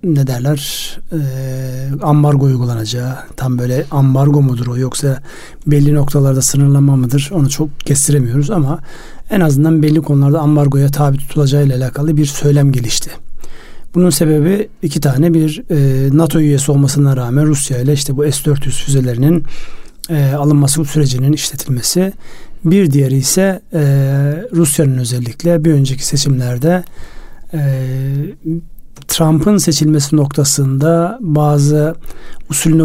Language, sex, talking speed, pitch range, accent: Turkish, male, 120 wpm, 140-160 Hz, native